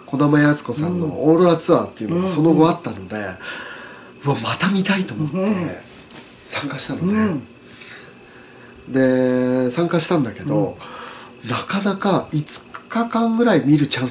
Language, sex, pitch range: Japanese, male, 125-185 Hz